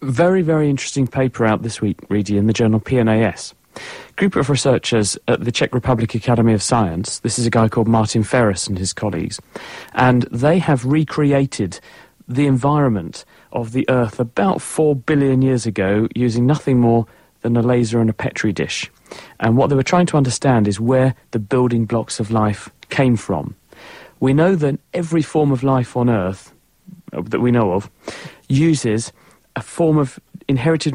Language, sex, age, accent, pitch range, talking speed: English, male, 40-59, British, 110-140 Hz, 175 wpm